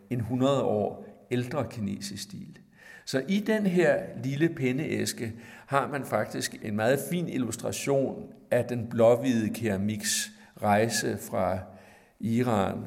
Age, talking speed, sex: 60-79, 120 wpm, male